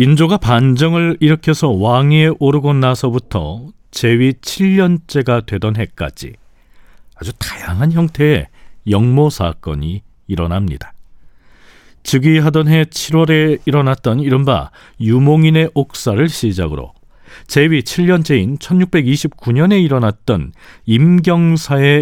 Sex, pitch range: male, 100-155 Hz